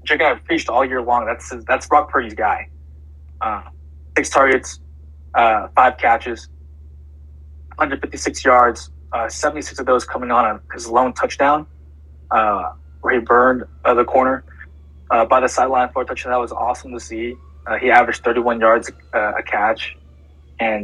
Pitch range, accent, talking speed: 75-120 Hz, American, 160 wpm